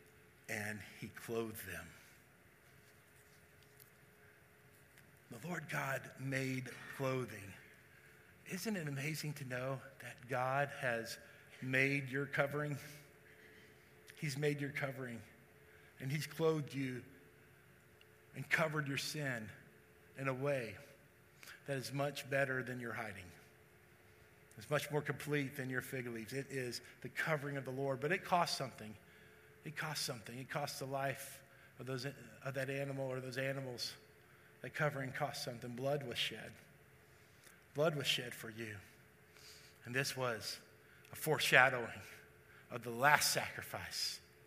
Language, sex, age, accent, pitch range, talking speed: English, male, 50-69, American, 120-145 Hz, 130 wpm